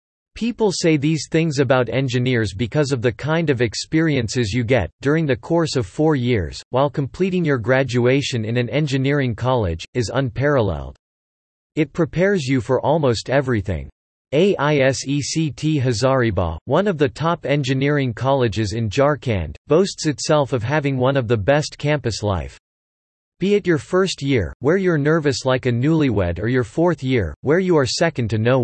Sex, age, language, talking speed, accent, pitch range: male, 40-59, English, 160 wpm, American, 115-150 Hz